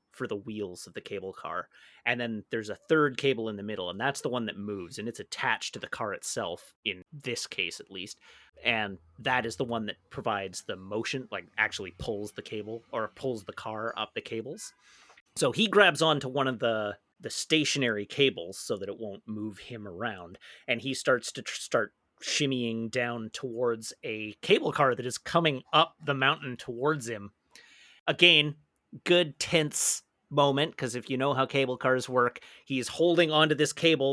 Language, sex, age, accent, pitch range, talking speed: English, male, 30-49, American, 115-150 Hz, 190 wpm